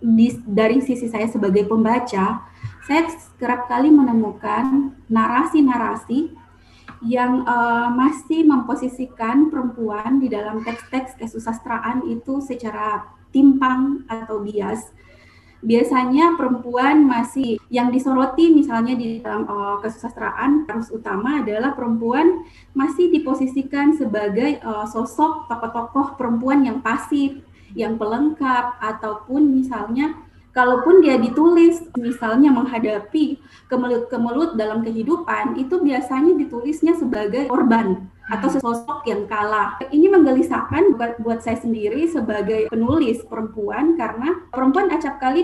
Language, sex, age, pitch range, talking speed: Indonesian, female, 20-39, 225-290 Hz, 110 wpm